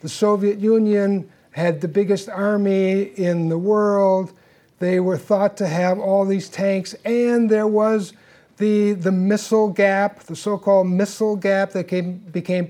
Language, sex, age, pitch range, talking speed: English, male, 60-79, 180-215 Hz, 145 wpm